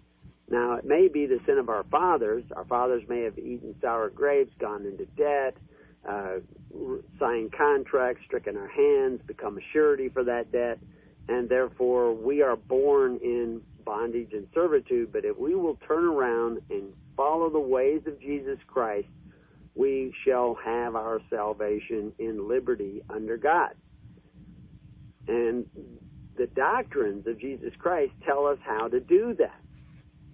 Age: 50-69